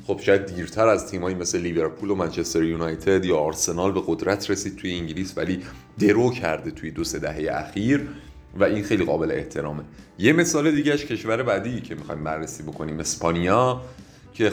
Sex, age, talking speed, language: male, 30-49, 175 wpm, Persian